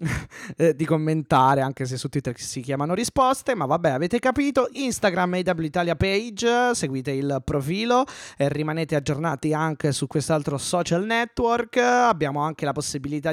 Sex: male